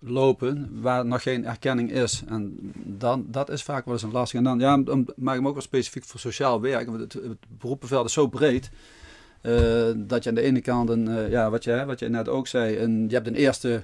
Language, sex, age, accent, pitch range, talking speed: Dutch, male, 40-59, Dutch, 115-130 Hz, 245 wpm